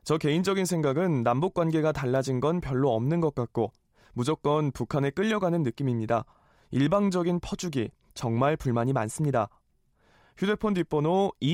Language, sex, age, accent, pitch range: Korean, male, 20-39, native, 125-170 Hz